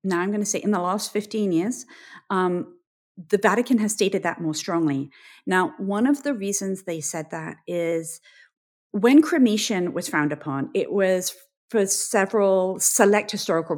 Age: 40-59